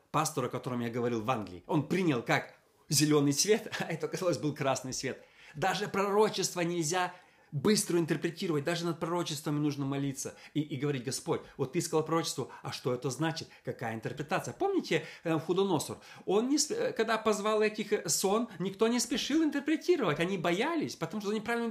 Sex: male